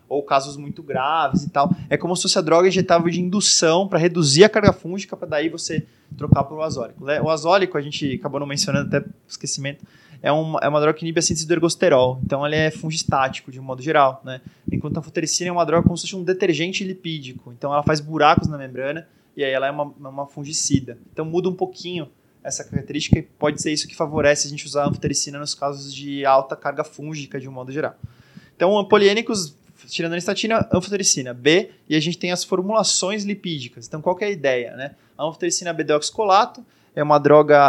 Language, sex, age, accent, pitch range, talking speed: Portuguese, male, 20-39, Brazilian, 140-175 Hz, 210 wpm